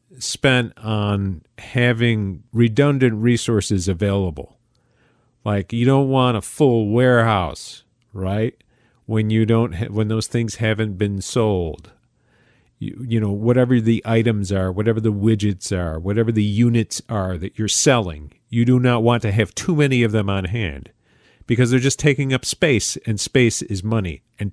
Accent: American